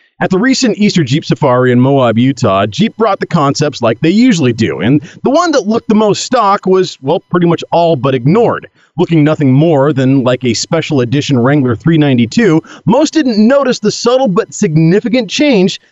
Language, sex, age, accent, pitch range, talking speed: English, male, 40-59, American, 125-180 Hz, 190 wpm